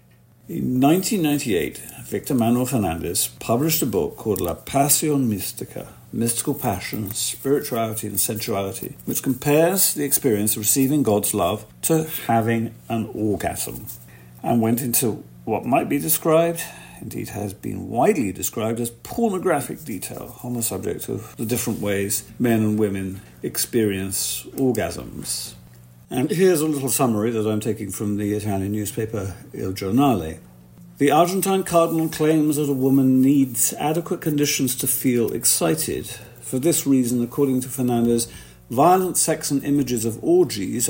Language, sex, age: English, male, 50-69